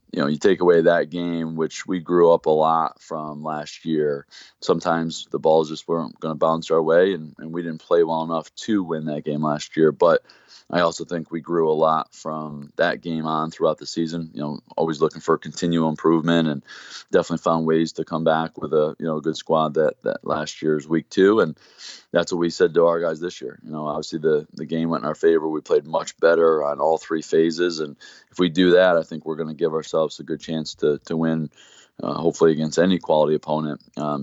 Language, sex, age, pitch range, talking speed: English, male, 20-39, 80-85 Hz, 235 wpm